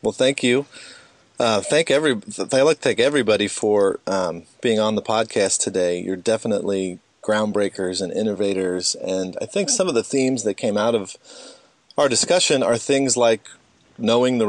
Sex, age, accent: male, 30-49, American